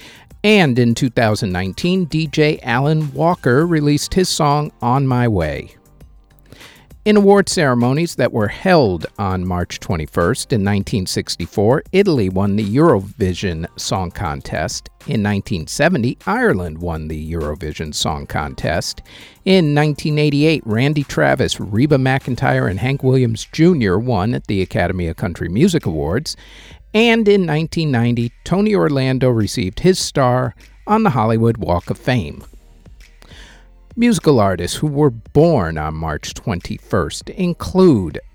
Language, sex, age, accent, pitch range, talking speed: English, male, 50-69, American, 95-155 Hz, 120 wpm